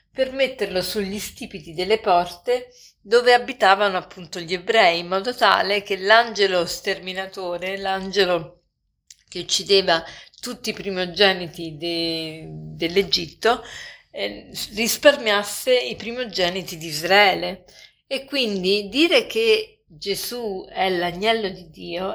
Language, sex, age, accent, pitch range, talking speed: Italian, female, 50-69, native, 180-235 Hz, 105 wpm